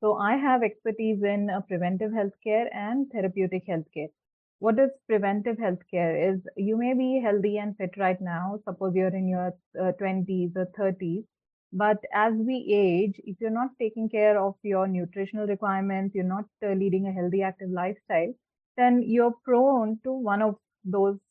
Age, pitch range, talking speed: 20-39, 185-215 Hz, 175 wpm